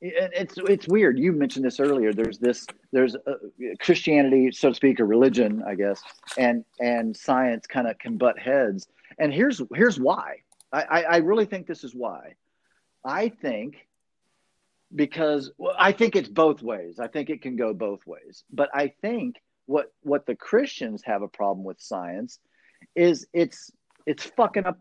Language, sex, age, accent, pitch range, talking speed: English, male, 50-69, American, 135-195 Hz, 170 wpm